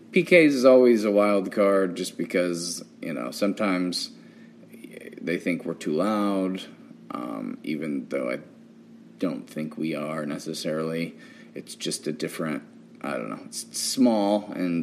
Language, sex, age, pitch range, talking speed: English, male, 30-49, 80-105 Hz, 140 wpm